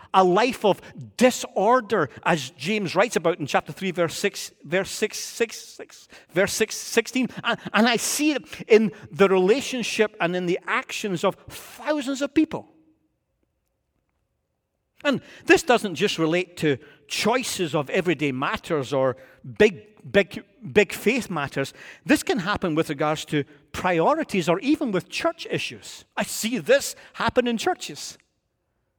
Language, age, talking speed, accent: English, 50-69, 150 wpm, British